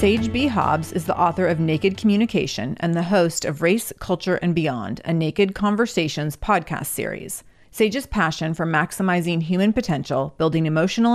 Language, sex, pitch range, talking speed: English, female, 160-210 Hz, 160 wpm